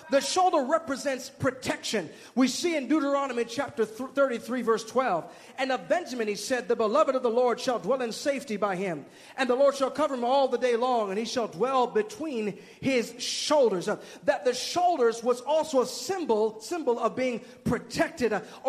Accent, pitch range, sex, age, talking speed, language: American, 230-285 Hz, male, 30-49, 185 wpm, English